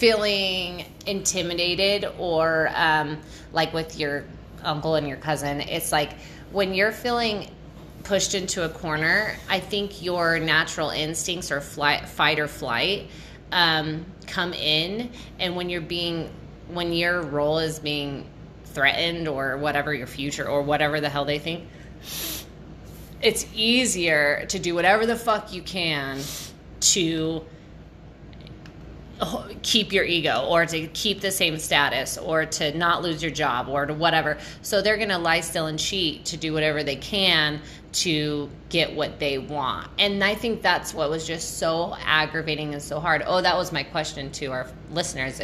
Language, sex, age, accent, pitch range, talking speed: English, female, 20-39, American, 150-180 Hz, 155 wpm